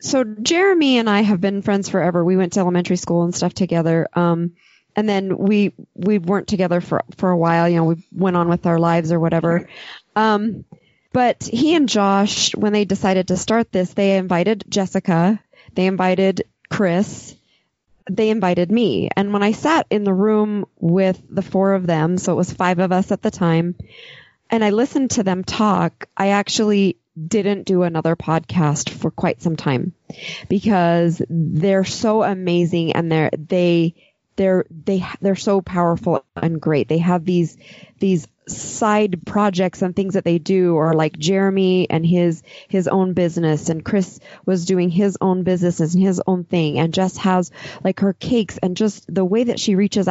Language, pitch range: English, 170-200 Hz